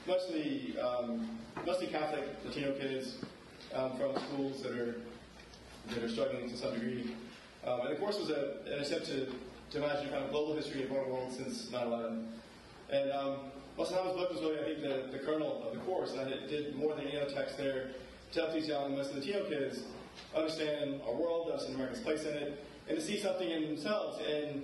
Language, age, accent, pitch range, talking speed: English, 20-39, American, 120-150 Hz, 205 wpm